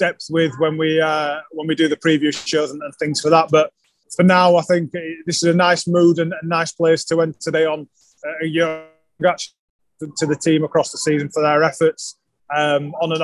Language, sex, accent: English, male, British